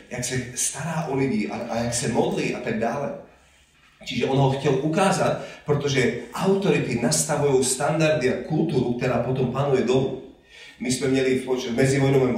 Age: 30-49